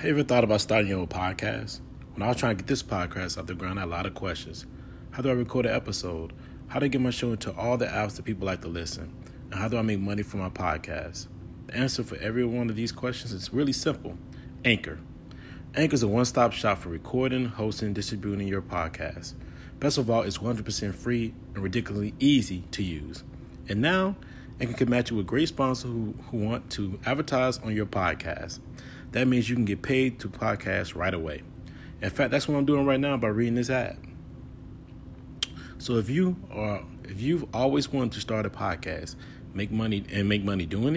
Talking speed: 215 wpm